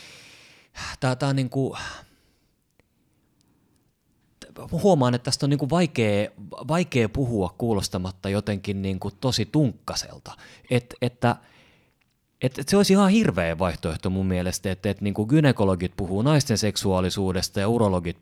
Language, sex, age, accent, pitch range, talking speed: Finnish, male, 30-49, native, 85-120 Hz, 130 wpm